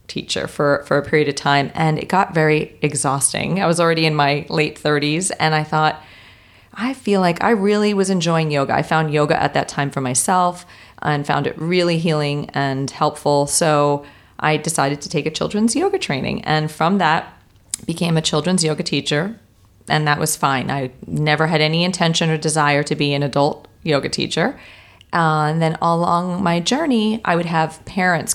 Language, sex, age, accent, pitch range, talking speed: English, female, 40-59, American, 145-180 Hz, 190 wpm